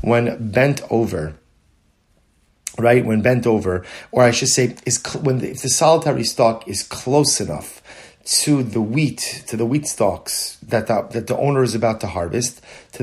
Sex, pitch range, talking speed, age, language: male, 110-135 Hz, 180 wpm, 30-49, English